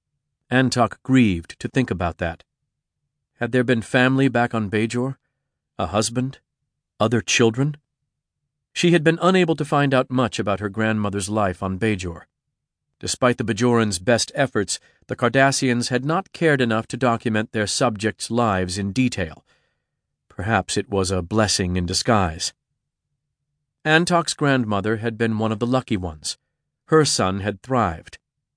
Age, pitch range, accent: 40-59, 105-135 Hz, American